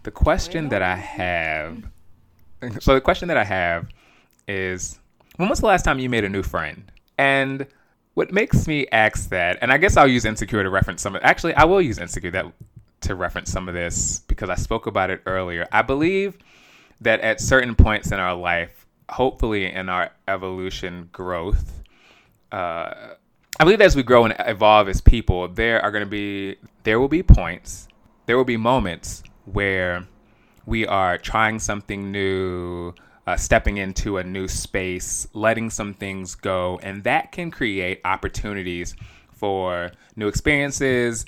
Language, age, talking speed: English, 20-39, 165 wpm